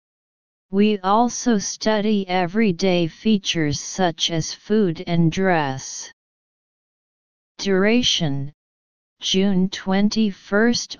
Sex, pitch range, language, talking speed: female, 165-200 Hz, English, 70 wpm